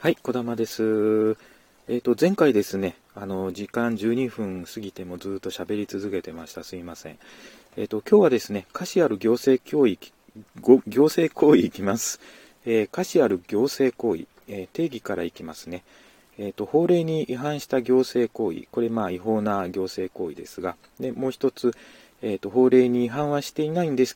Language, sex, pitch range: Japanese, male, 105-140 Hz